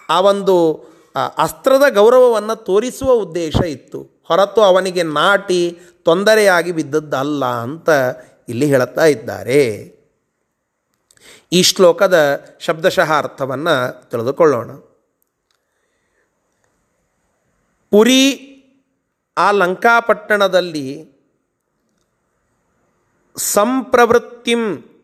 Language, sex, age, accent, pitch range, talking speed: Kannada, male, 30-49, native, 175-225 Hz, 60 wpm